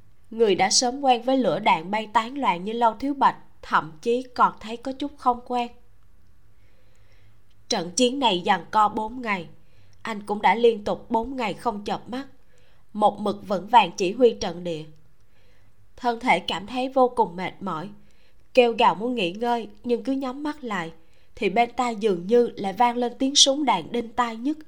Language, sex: Vietnamese, female